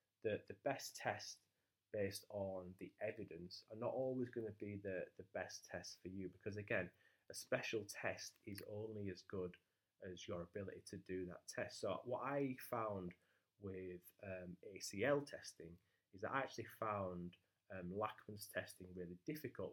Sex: male